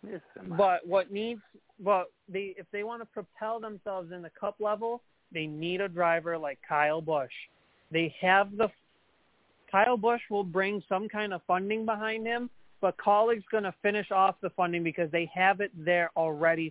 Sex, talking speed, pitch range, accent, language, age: male, 180 wpm, 175-215 Hz, American, English, 30-49